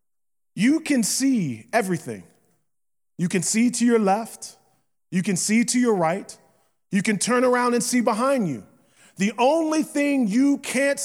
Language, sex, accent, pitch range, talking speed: English, male, American, 190-250 Hz, 155 wpm